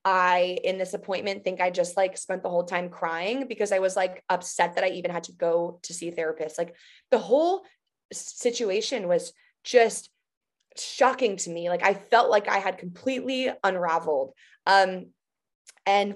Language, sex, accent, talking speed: English, female, American, 175 wpm